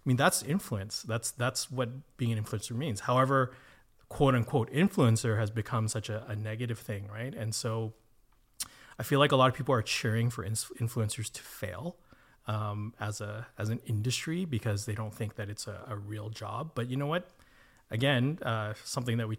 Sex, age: male, 30-49